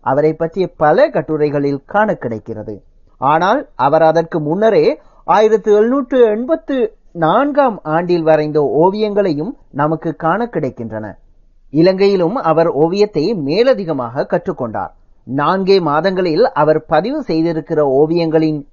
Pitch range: 150-215 Hz